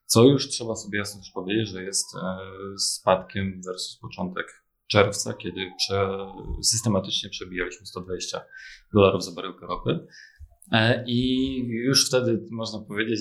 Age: 20-39